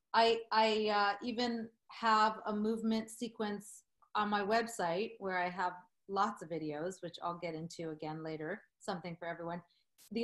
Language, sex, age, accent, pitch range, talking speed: English, female, 40-59, American, 200-255 Hz, 160 wpm